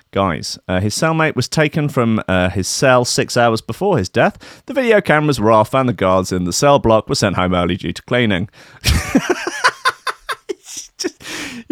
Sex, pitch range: male, 105-165 Hz